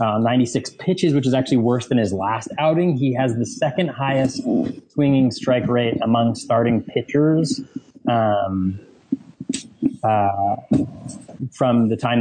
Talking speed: 135 wpm